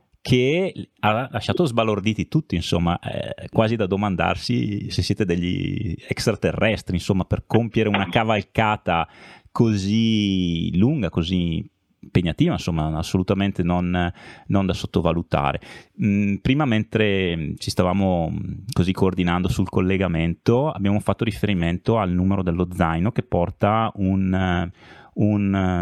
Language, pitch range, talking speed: Italian, 85-105 Hz, 110 wpm